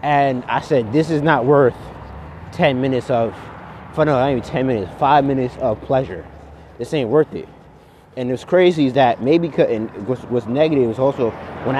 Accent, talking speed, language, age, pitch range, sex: American, 180 wpm, English, 20-39, 120-155 Hz, male